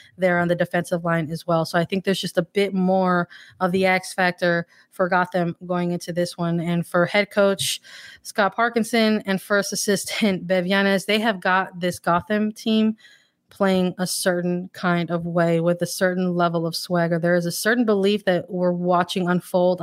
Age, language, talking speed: 20-39, English, 190 wpm